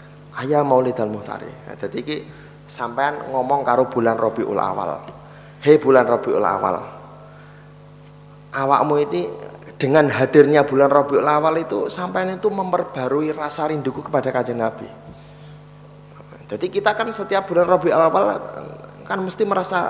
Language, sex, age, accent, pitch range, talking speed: Indonesian, male, 30-49, native, 130-160 Hz, 120 wpm